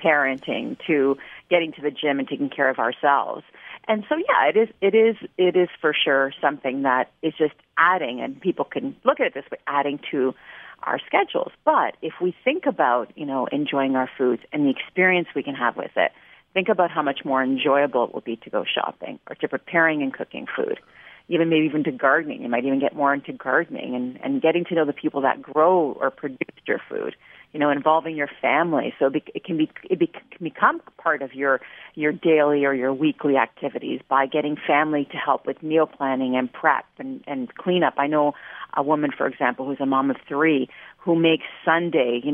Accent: American